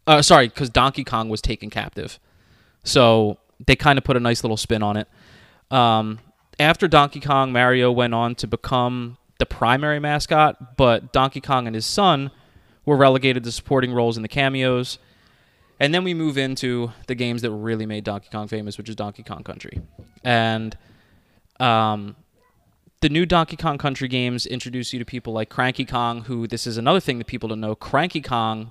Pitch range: 110-135 Hz